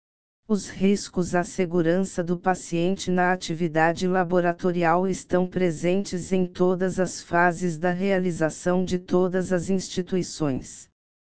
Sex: female